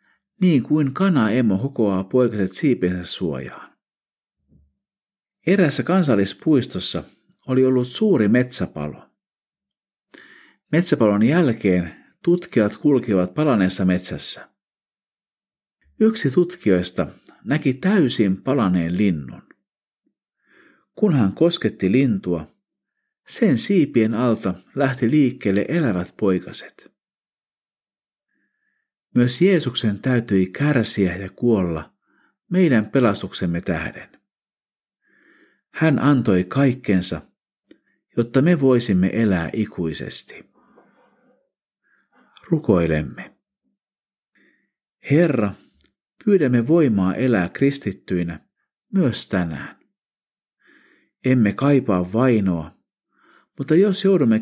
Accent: native